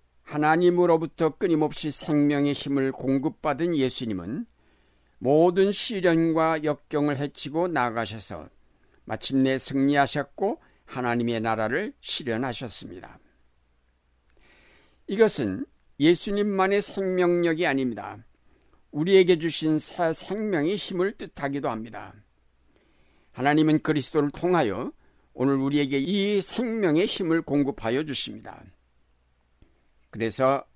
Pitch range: 115-170 Hz